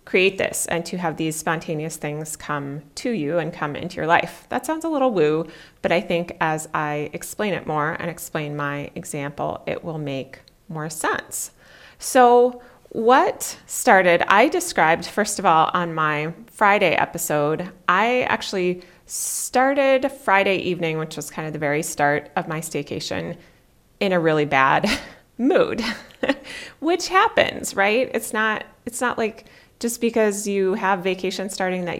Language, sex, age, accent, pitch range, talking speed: English, female, 30-49, American, 160-205 Hz, 160 wpm